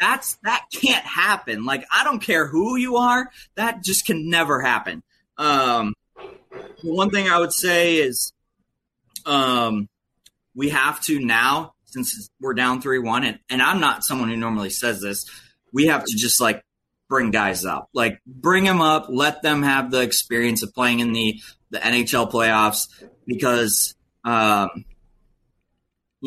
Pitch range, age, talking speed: 115-145 Hz, 20-39, 155 wpm